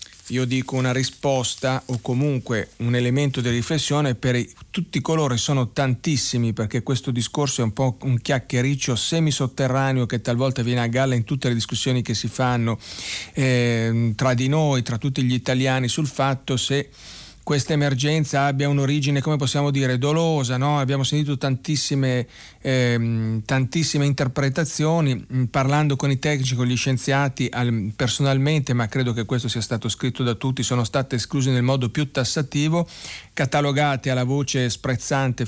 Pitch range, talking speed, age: 120-140 Hz, 150 wpm, 40-59